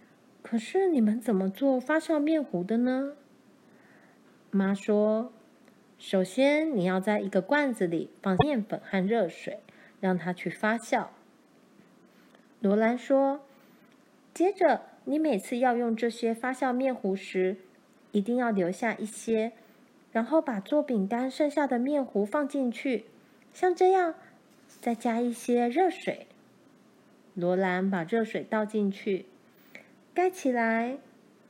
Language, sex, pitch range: Chinese, female, 200-270 Hz